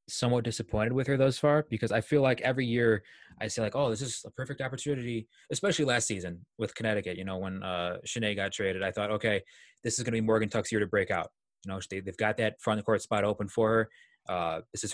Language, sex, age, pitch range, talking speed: English, male, 20-39, 105-135 Hz, 245 wpm